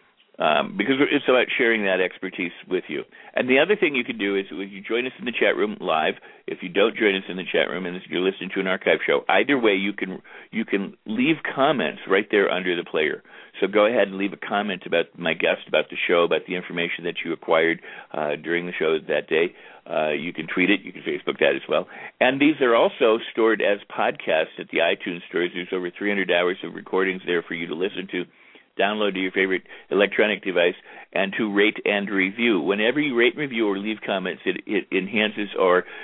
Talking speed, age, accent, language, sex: 225 wpm, 50-69, American, English, male